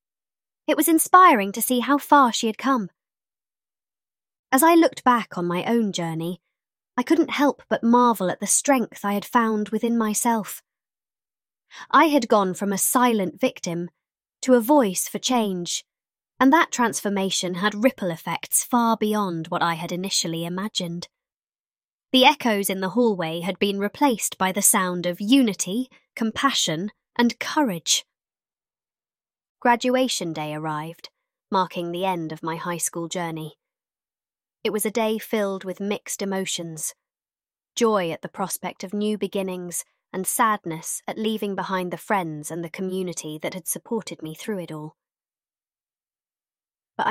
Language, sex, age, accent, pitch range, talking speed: English, female, 20-39, British, 175-235 Hz, 150 wpm